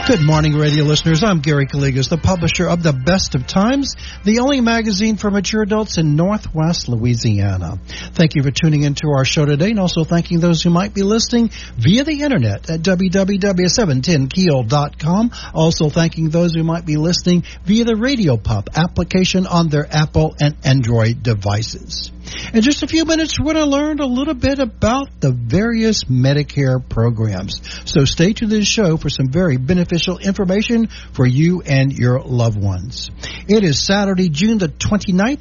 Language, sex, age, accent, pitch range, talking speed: English, male, 60-79, American, 130-195 Hz, 170 wpm